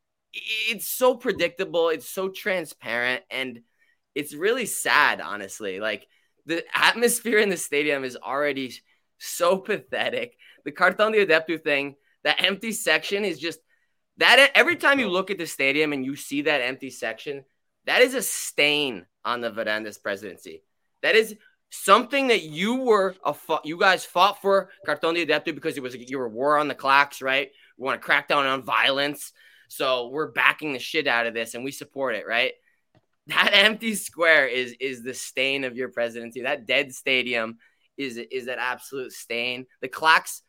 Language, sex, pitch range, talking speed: English, male, 125-190 Hz, 175 wpm